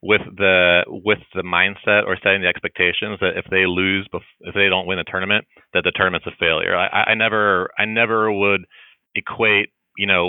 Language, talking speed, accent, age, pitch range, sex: English, 190 wpm, American, 30-49, 90-100 Hz, male